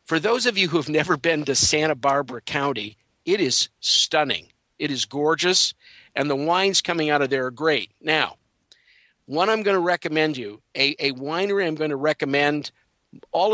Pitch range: 135-165 Hz